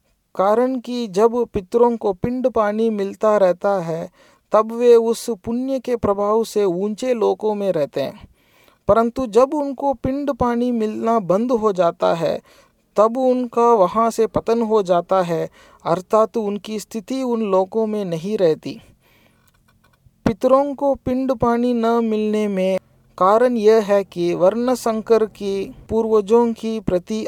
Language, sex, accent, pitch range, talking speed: Tamil, male, native, 195-235 Hz, 140 wpm